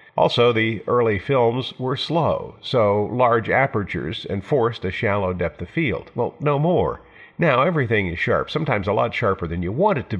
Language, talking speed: English, 180 wpm